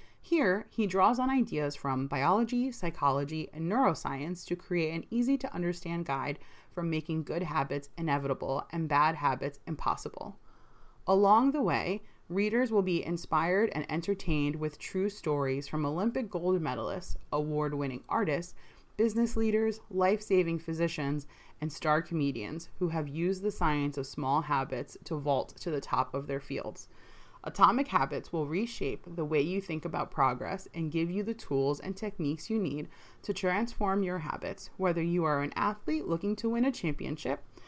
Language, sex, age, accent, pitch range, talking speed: English, female, 30-49, American, 145-200 Hz, 155 wpm